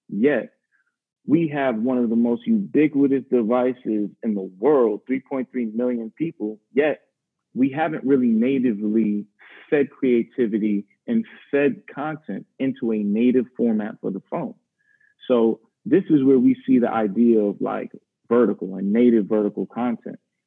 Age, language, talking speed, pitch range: 30-49, English, 140 wpm, 110-150 Hz